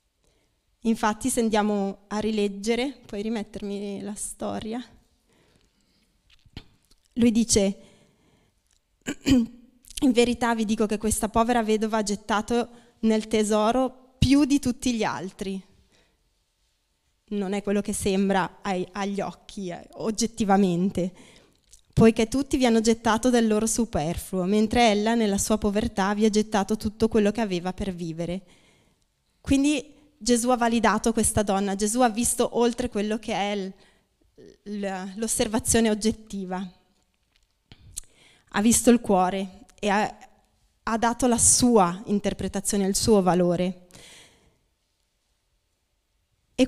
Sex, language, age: female, Italian, 20-39